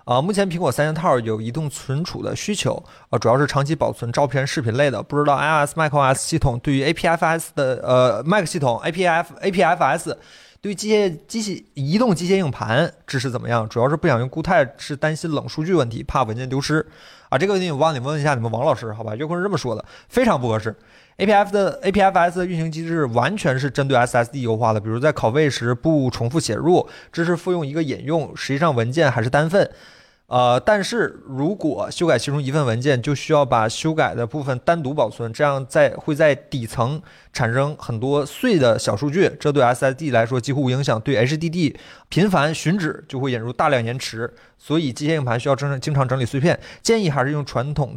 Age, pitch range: 20-39, 120-165 Hz